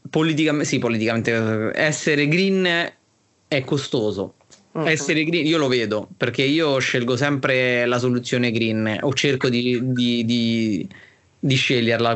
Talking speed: 130 wpm